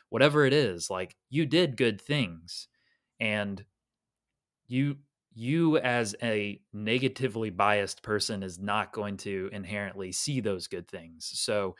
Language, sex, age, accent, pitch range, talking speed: English, male, 20-39, American, 100-125 Hz, 130 wpm